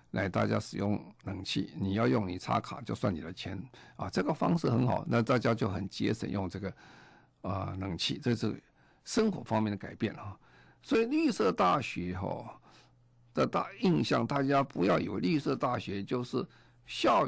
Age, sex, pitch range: 50-69, male, 100-125 Hz